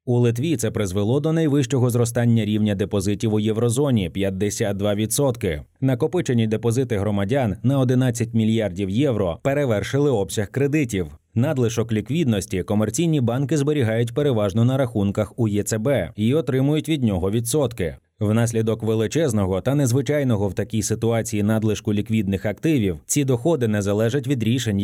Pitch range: 105-130 Hz